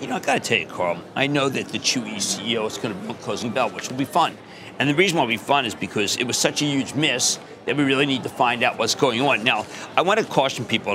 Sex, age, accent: male, 50-69, American